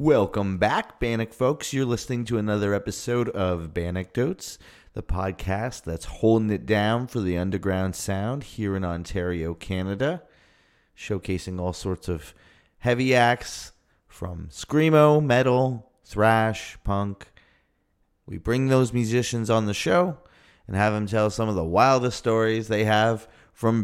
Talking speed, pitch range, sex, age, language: 140 wpm, 95-120 Hz, male, 30-49, English